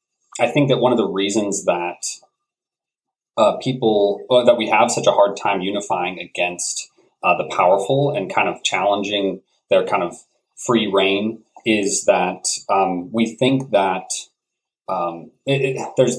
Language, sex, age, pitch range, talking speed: English, male, 30-49, 95-130 Hz, 145 wpm